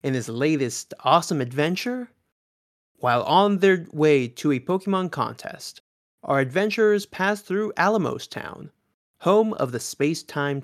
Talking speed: 135 wpm